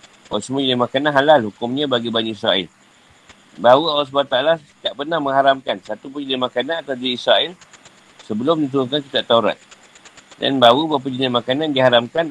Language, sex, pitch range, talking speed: Malay, male, 125-150 Hz, 145 wpm